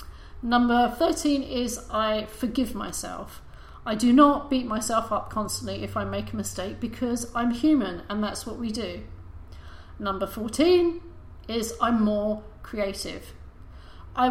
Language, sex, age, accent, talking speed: English, female, 40-59, British, 140 wpm